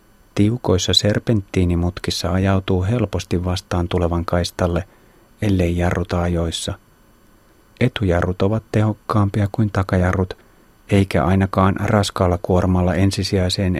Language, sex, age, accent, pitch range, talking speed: Finnish, male, 30-49, native, 90-105 Hz, 85 wpm